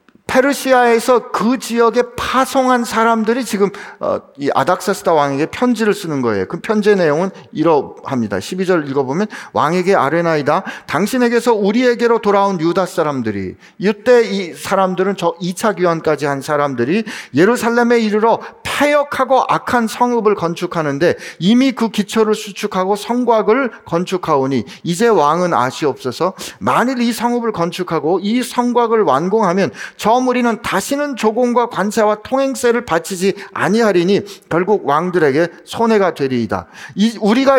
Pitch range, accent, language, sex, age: 180-240 Hz, native, Korean, male, 40-59